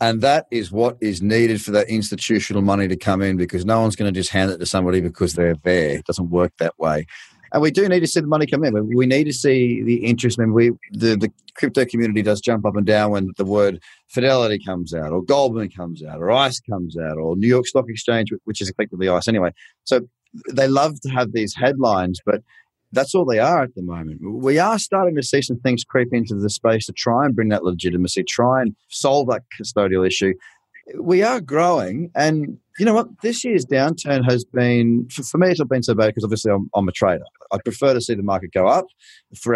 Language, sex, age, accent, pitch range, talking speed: English, male, 30-49, Australian, 100-135 Hz, 230 wpm